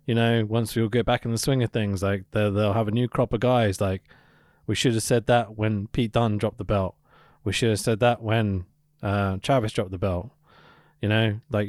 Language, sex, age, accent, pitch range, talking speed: English, male, 20-39, British, 105-145 Hz, 235 wpm